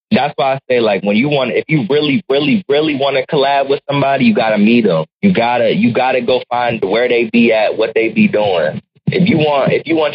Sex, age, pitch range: male, 20-39, 110-145 Hz